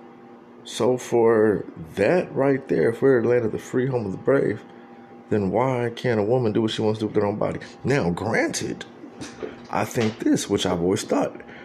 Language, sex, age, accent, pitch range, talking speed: English, male, 30-49, American, 95-120 Hz, 195 wpm